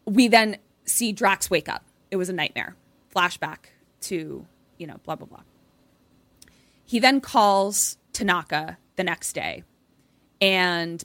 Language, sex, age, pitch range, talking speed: English, female, 20-39, 165-200 Hz, 135 wpm